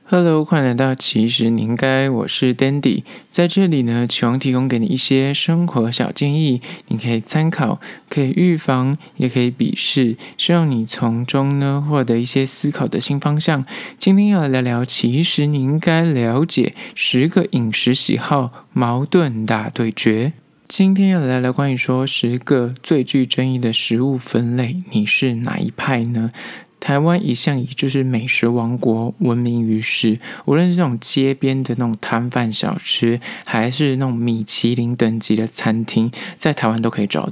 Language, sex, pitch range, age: Chinese, male, 115-145 Hz, 20-39